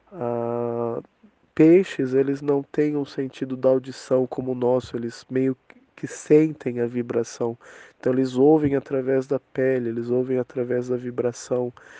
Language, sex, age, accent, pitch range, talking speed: English, male, 20-39, Brazilian, 130-165 Hz, 140 wpm